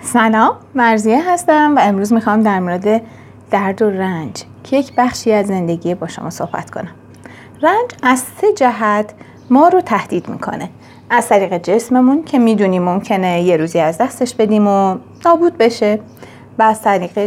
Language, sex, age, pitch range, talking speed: Arabic, female, 30-49, 190-260 Hz, 155 wpm